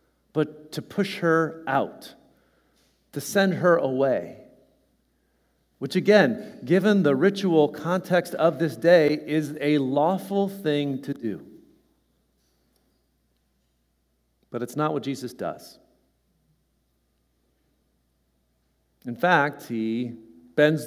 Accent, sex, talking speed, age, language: American, male, 100 wpm, 50-69, English